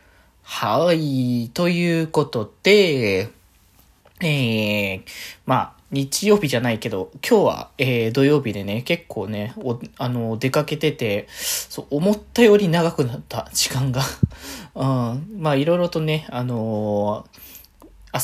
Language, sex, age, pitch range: Japanese, male, 20-39, 110-155 Hz